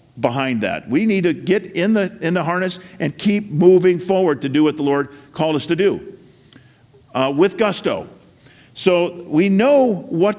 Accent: American